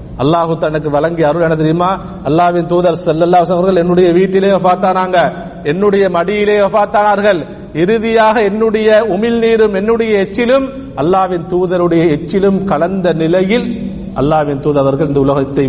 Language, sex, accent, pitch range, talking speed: Tamil, male, native, 160-205 Hz, 40 wpm